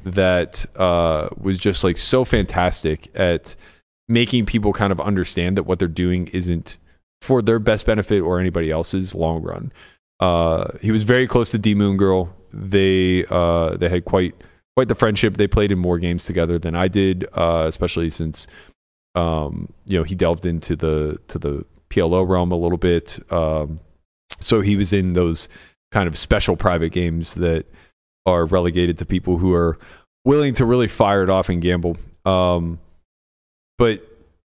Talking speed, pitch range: 170 wpm, 85-100 Hz